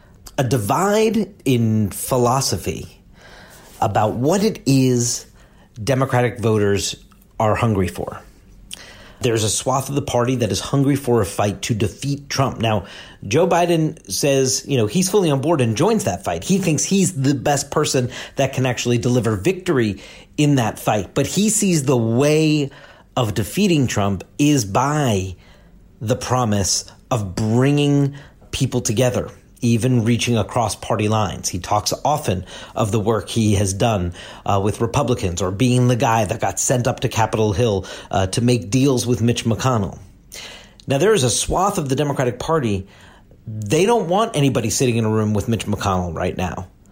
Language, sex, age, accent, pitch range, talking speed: English, male, 40-59, American, 105-140 Hz, 165 wpm